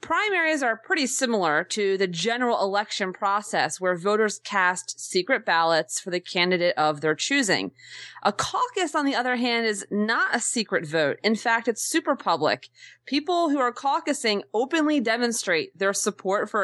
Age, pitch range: 30-49, 195-265 Hz